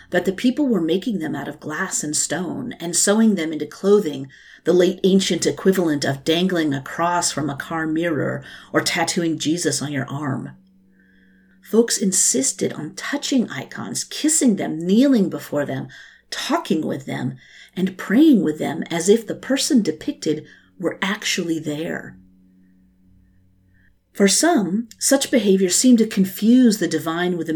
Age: 50-69